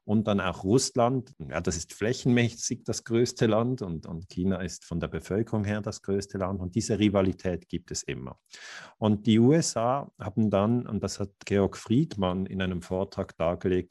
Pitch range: 90-110 Hz